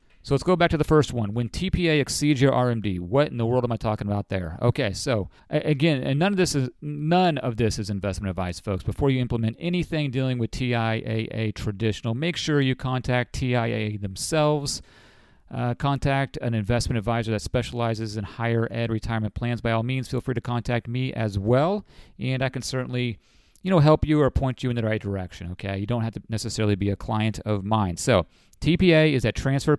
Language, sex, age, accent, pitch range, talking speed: English, male, 40-59, American, 110-140 Hz, 210 wpm